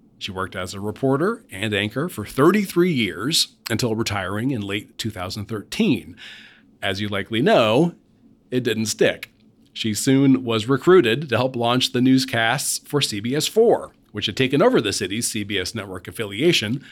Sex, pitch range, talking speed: male, 105-140 Hz, 150 wpm